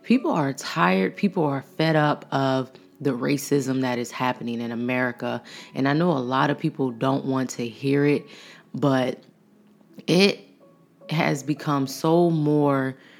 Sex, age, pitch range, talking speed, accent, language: female, 20-39, 135-150 Hz, 150 wpm, American, English